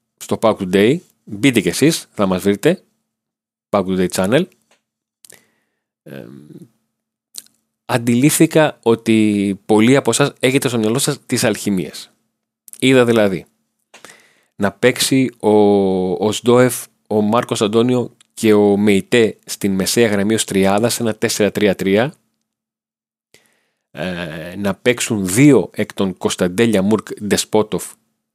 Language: Greek